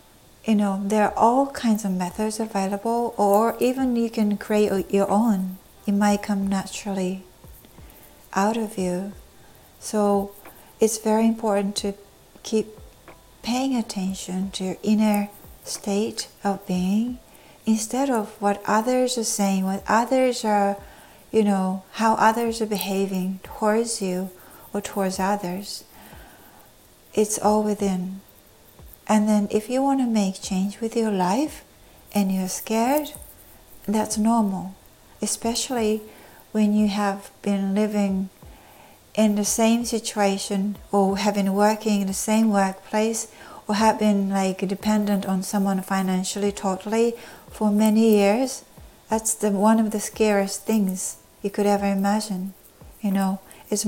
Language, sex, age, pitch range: Japanese, female, 60-79, 195-220 Hz